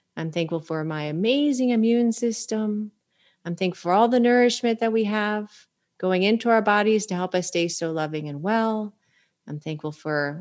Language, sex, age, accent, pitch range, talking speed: English, female, 30-49, American, 165-220 Hz, 180 wpm